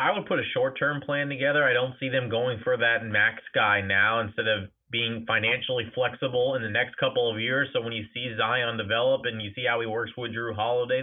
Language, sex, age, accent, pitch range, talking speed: English, male, 30-49, American, 115-135 Hz, 235 wpm